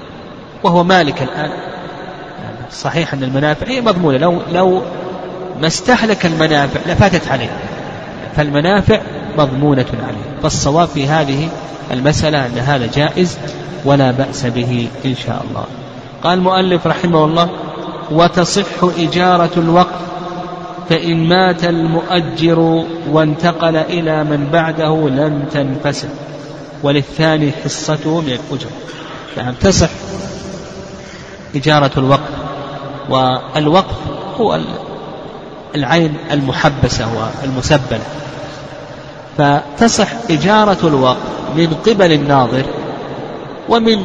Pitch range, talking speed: 145-175 Hz, 85 wpm